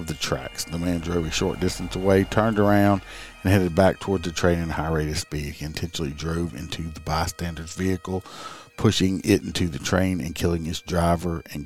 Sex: male